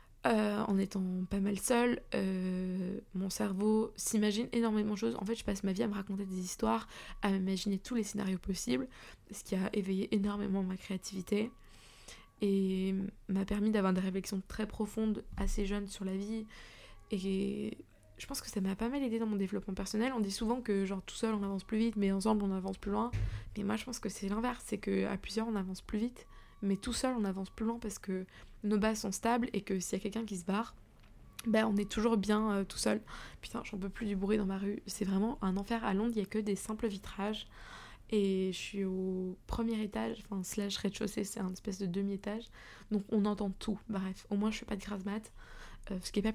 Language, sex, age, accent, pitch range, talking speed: French, female, 20-39, French, 195-220 Hz, 230 wpm